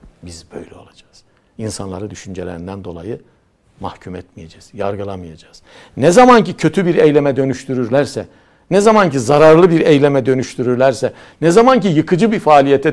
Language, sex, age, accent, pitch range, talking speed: Turkish, male, 60-79, native, 120-170 Hz, 120 wpm